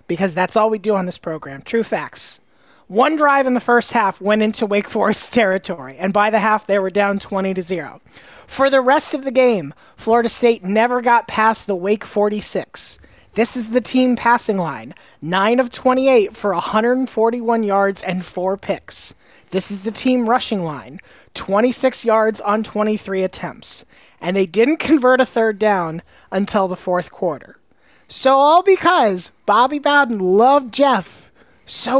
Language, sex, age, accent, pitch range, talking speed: English, male, 30-49, American, 180-245 Hz, 170 wpm